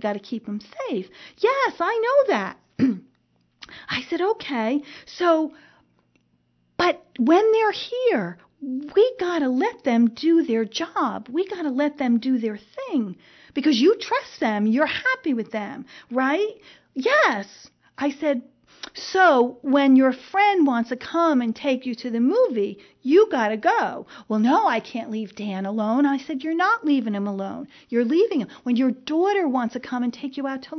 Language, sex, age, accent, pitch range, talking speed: English, female, 40-59, American, 245-350 Hz, 175 wpm